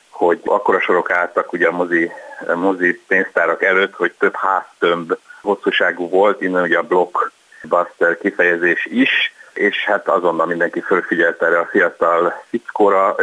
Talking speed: 130 wpm